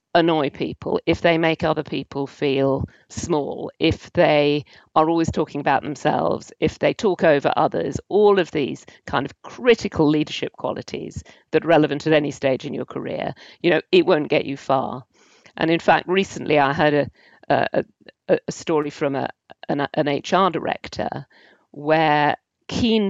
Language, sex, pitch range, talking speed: English, female, 145-165 Hz, 165 wpm